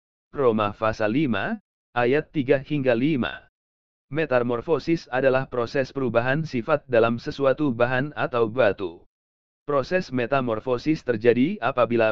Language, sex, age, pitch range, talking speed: English, male, 40-59, 120-145 Hz, 105 wpm